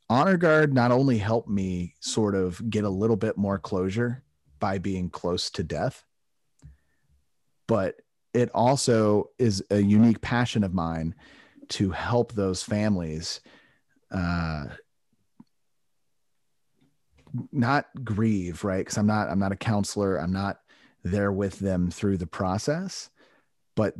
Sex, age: male, 30-49